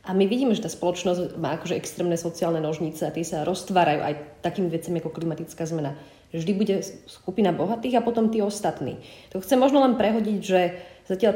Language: Slovak